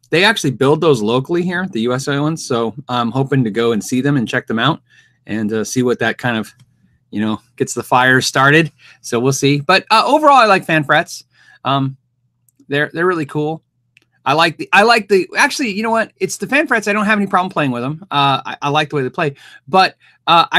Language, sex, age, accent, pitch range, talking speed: English, male, 30-49, American, 125-180 Hz, 235 wpm